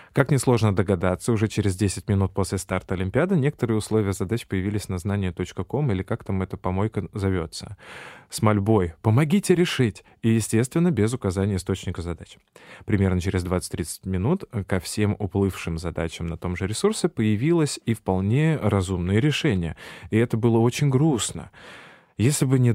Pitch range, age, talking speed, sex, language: 95-120 Hz, 20-39, 150 wpm, male, Russian